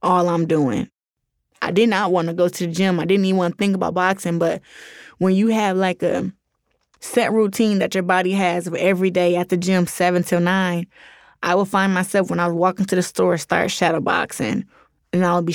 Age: 20-39